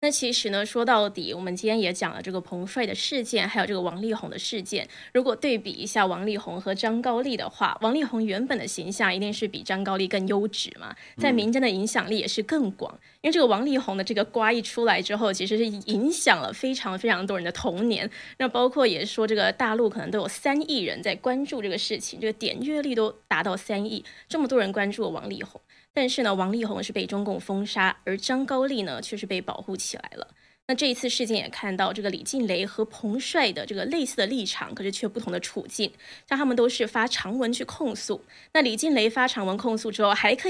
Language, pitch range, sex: Chinese, 200-245 Hz, female